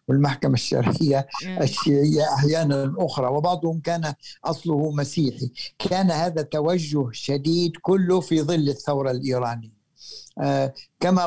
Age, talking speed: 60-79, 105 wpm